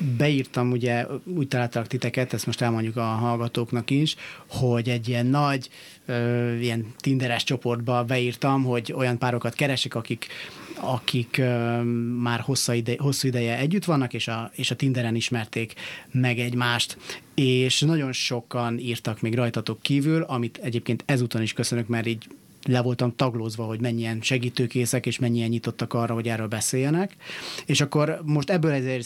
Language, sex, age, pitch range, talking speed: Hungarian, male, 30-49, 120-135 Hz, 155 wpm